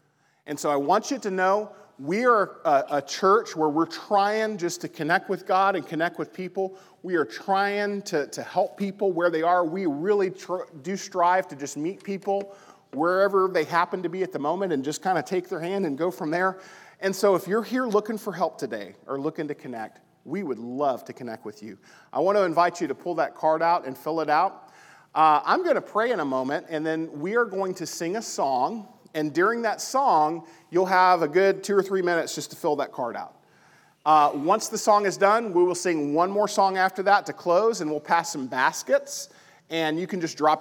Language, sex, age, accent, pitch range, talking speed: English, male, 40-59, American, 155-200 Hz, 230 wpm